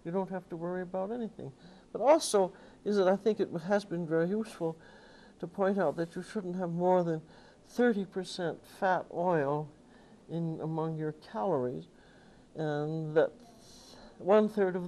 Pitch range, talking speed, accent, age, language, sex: 155-190 Hz, 155 wpm, American, 60-79, English, male